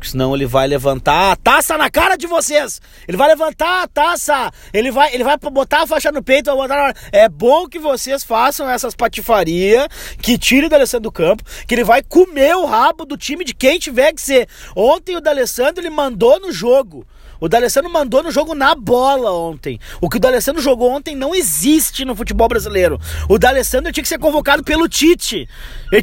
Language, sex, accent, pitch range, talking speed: Portuguese, male, Brazilian, 215-310 Hz, 195 wpm